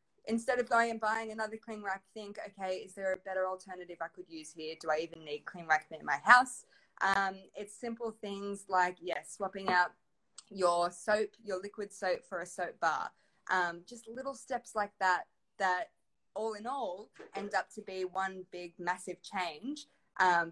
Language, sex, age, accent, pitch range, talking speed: English, female, 20-39, Australian, 180-225 Hz, 185 wpm